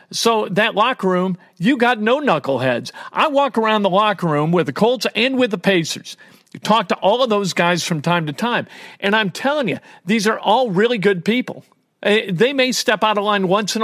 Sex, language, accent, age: male, English, American, 50-69